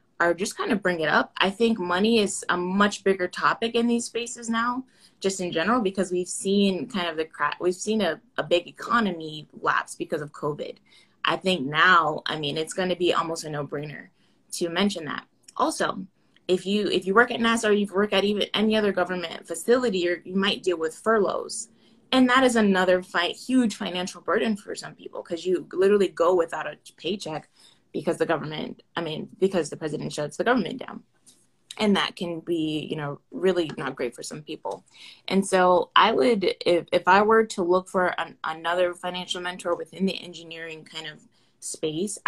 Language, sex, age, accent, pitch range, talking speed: English, female, 20-39, American, 170-220 Hz, 195 wpm